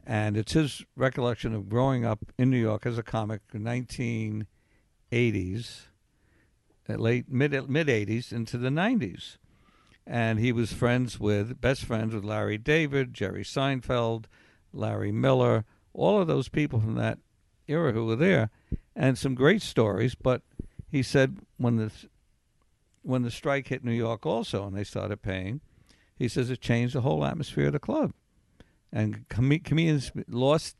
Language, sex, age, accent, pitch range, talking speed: English, male, 60-79, American, 105-130 Hz, 155 wpm